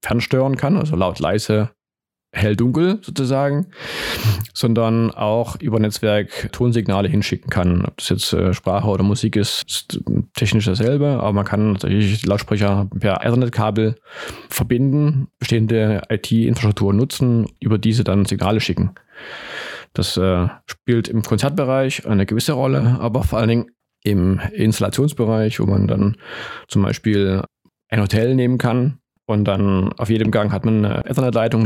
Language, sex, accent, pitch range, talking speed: German, male, German, 100-120 Hz, 140 wpm